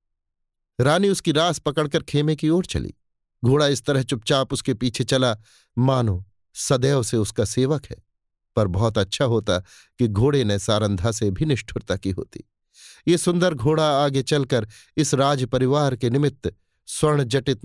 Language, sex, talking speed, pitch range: Hindi, male, 155 wpm, 105-140 Hz